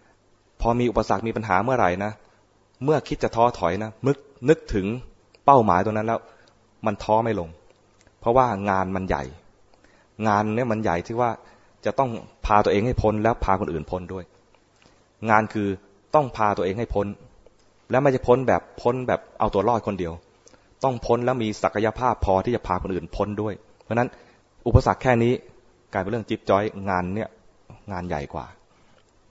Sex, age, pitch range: male, 20-39, 95-115 Hz